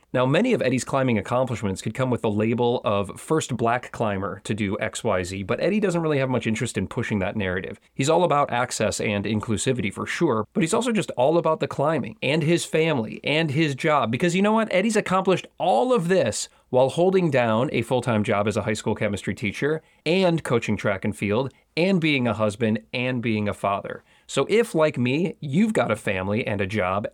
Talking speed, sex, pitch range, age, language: 210 wpm, male, 105-155 Hz, 30-49, English